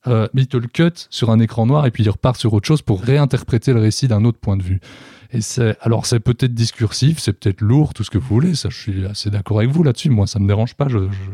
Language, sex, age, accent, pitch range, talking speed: French, male, 20-39, French, 105-125 Hz, 280 wpm